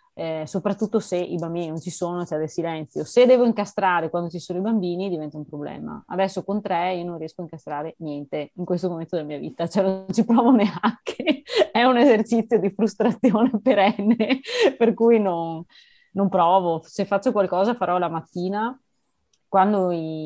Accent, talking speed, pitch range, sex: native, 185 wpm, 170-205 Hz, female